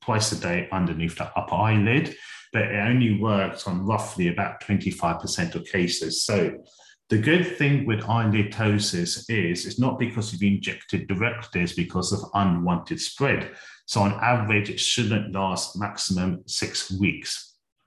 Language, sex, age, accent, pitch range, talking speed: English, male, 40-59, British, 95-120 Hz, 150 wpm